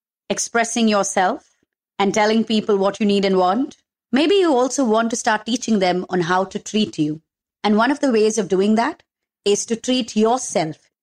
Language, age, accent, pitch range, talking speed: English, 30-49, Indian, 185-230 Hz, 190 wpm